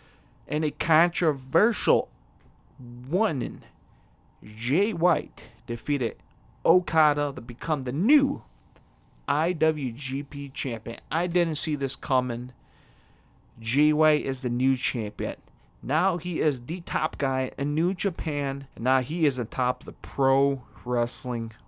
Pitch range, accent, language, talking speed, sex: 125-155 Hz, American, English, 120 wpm, male